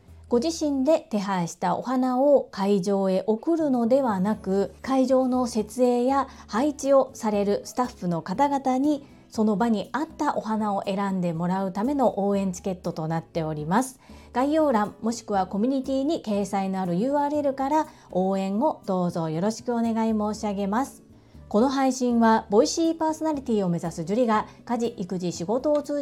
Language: Japanese